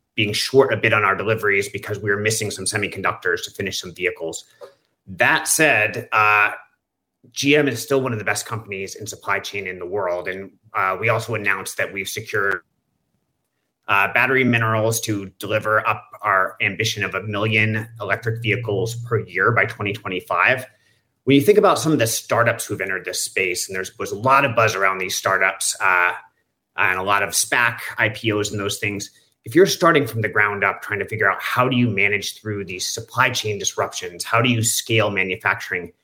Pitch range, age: 100-120 Hz, 30-49